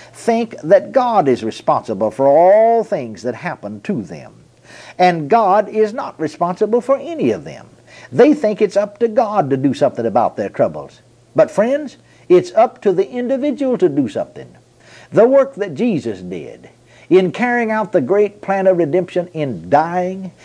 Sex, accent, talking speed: male, American, 170 wpm